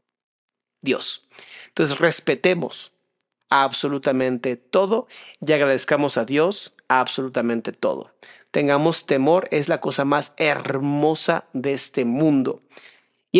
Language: Spanish